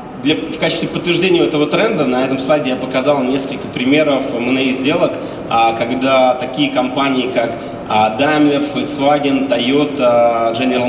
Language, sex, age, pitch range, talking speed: Russian, male, 20-39, 115-150 Hz, 140 wpm